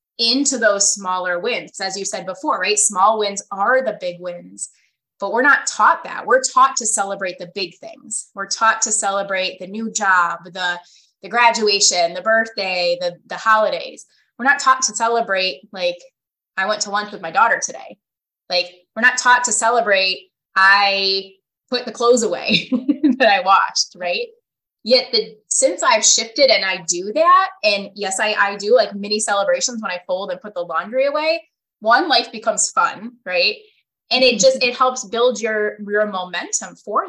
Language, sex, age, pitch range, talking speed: English, female, 20-39, 195-255 Hz, 180 wpm